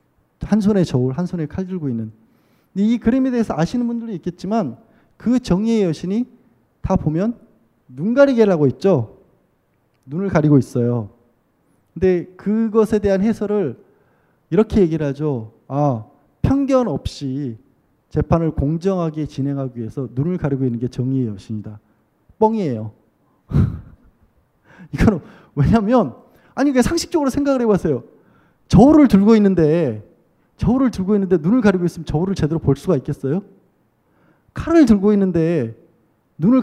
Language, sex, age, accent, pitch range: Korean, male, 20-39, native, 140-210 Hz